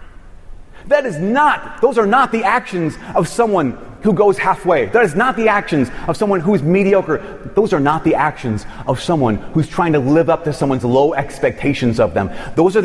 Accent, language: American, English